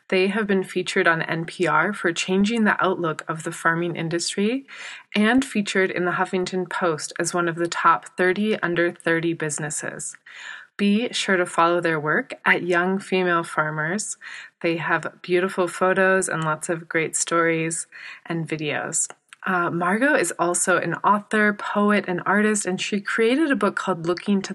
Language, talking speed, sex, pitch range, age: English, 165 wpm, female, 170-195 Hz, 20-39